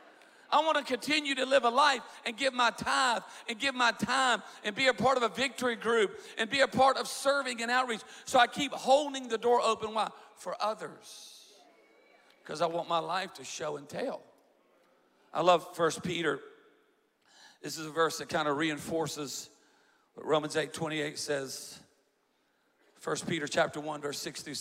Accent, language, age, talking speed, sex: American, English, 50-69, 180 wpm, male